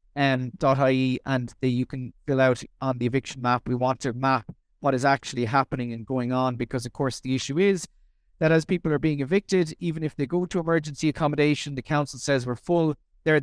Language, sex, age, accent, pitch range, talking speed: English, male, 30-49, Irish, 130-170 Hz, 210 wpm